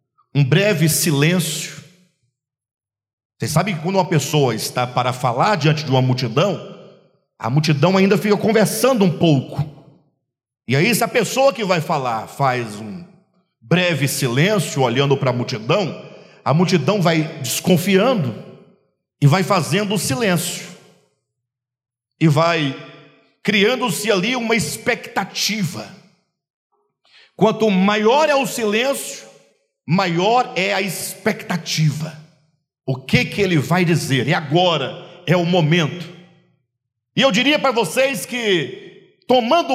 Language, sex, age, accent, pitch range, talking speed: Portuguese, male, 50-69, Brazilian, 150-205 Hz, 120 wpm